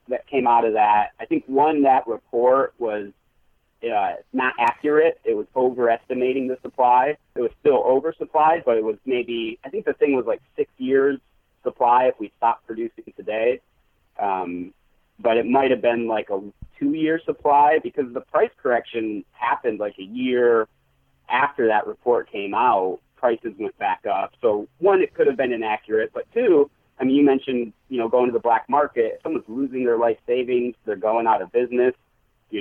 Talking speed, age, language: 180 wpm, 30-49, English